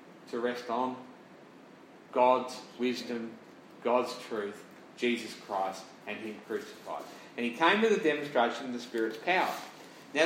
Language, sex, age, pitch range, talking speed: English, male, 50-69, 120-175 Hz, 135 wpm